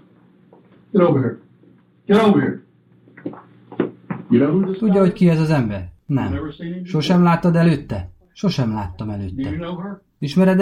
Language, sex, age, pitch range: Hungarian, male, 30-49, 105-170 Hz